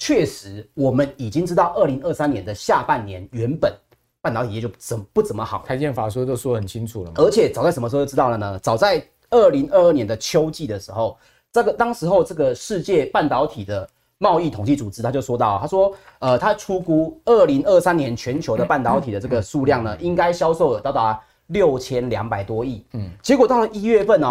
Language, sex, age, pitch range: Chinese, male, 30-49, 115-170 Hz